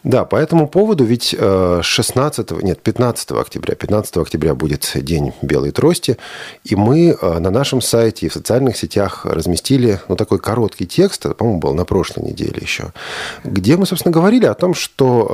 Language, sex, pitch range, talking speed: Russian, male, 95-125 Hz, 170 wpm